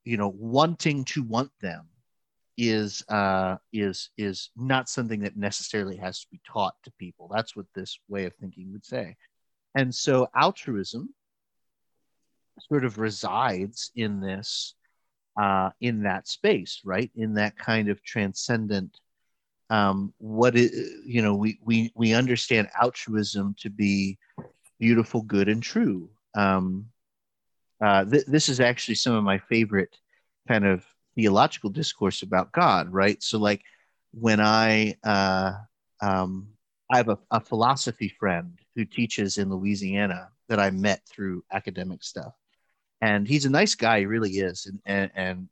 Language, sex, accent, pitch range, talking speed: English, male, American, 95-115 Hz, 150 wpm